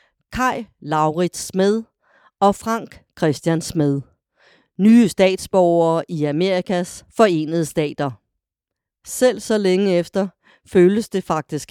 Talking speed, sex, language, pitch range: 100 wpm, female, Danish, 155-195 Hz